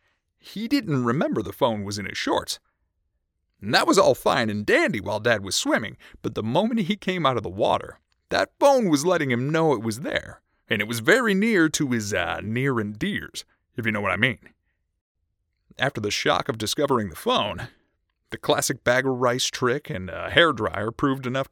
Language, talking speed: English, 200 wpm